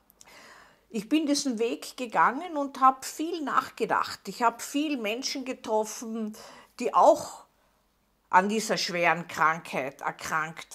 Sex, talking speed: female, 115 wpm